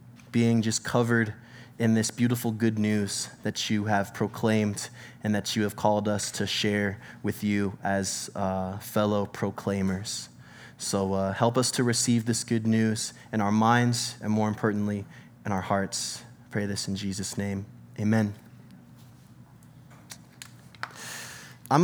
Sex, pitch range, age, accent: male, 110-135 Hz, 20-39, American